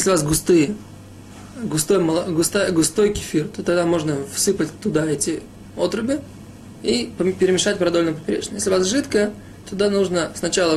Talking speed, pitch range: 140 wpm, 150-195 Hz